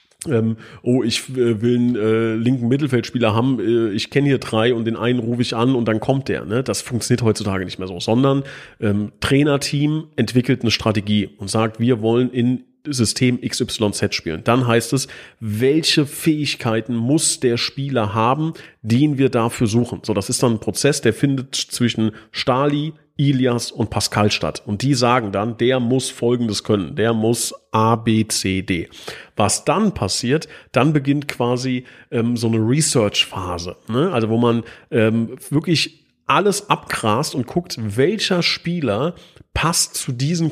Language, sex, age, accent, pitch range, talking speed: German, male, 40-59, German, 110-135 Hz, 165 wpm